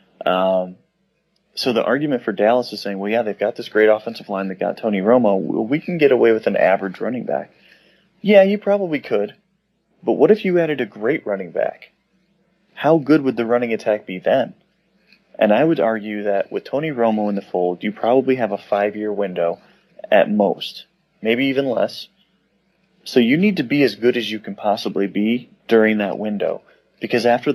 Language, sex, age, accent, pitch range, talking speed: English, male, 30-49, American, 105-130 Hz, 195 wpm